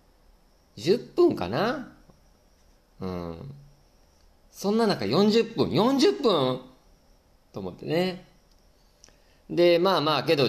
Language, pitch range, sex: Japanese, 90-140 Hz, male